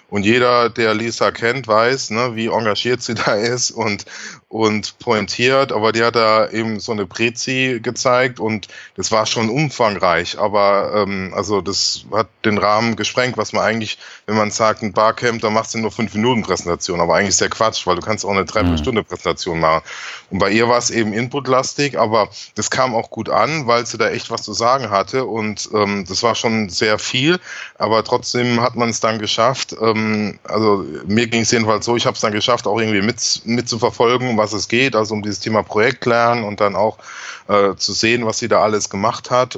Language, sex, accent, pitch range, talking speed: German, male, German, 105-120 Hz, 210 wpm